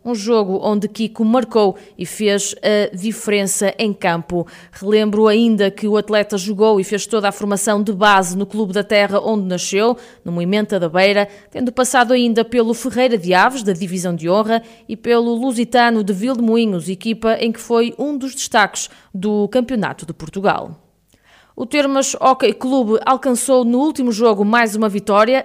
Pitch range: 200-235 Hz